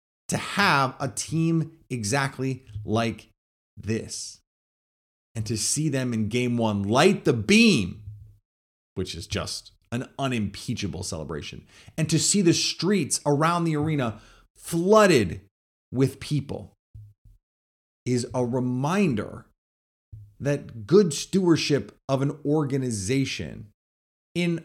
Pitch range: 100-150 Hz